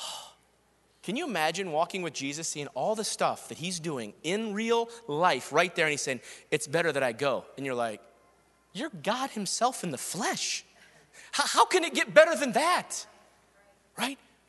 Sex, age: male, 30-49